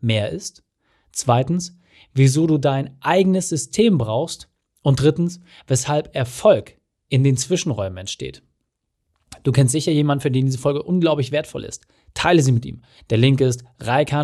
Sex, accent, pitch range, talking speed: male, German, 125-165 Hz, 150 wpm